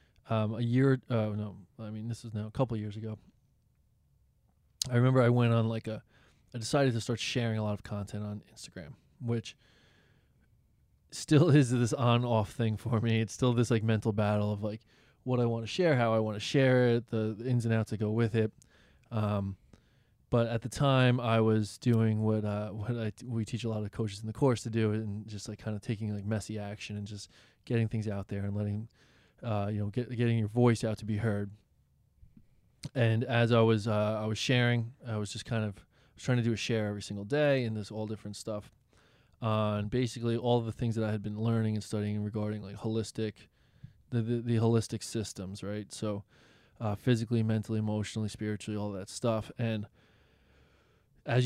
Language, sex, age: English, male, 20-39